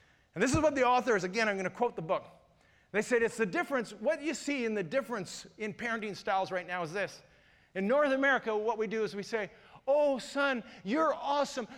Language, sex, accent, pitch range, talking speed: English, male, American, 190-275 Hz, 230 wpm